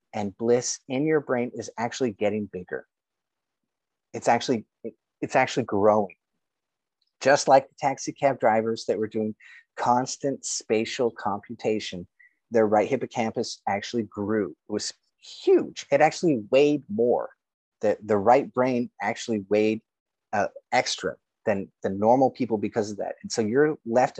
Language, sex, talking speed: English, male, 140 wpm